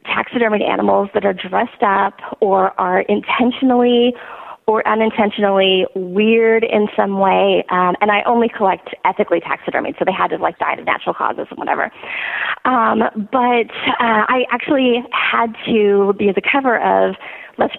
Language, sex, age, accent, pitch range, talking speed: English, female, 30-49, American, 195-245 Hz, 150 wpm